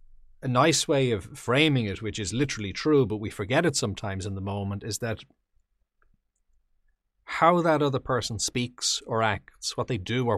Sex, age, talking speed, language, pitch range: male, 40-59, 180 wpm, English, 95-130 Hz